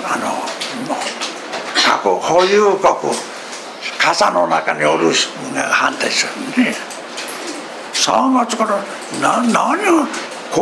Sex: male